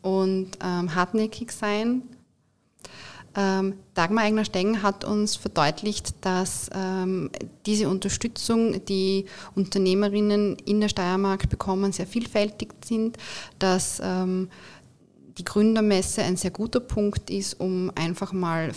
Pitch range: 170-205 Hz